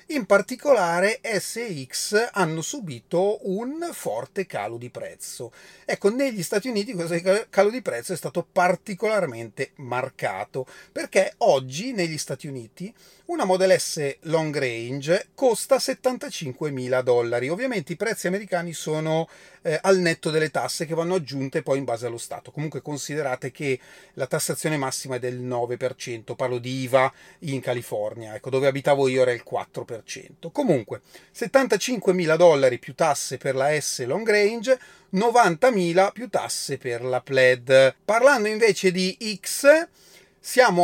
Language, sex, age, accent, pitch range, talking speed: Italian, male, 30-49, native, 135-200 Hz, 140 wpm